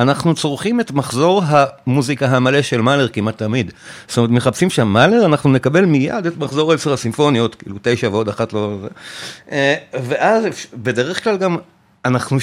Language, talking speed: Hebrew, 155 wpm